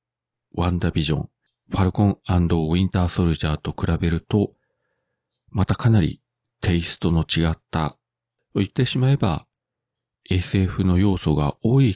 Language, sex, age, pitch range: Japanese, male, 40-59, 85-100 Hz